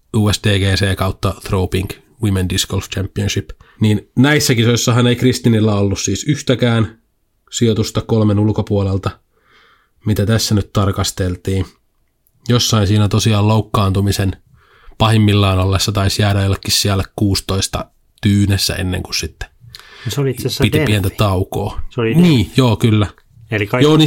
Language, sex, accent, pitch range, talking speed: Finnish, male, native, 100-125 Hz, 110 wpm